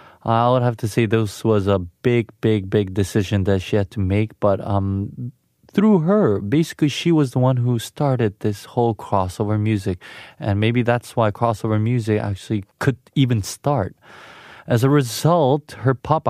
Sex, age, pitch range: male, 20-39, 105-130 Hz